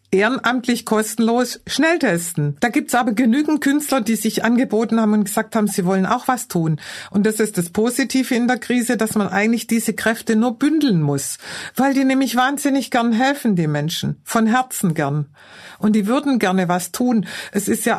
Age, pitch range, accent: 50-69, 200-255 Hz, German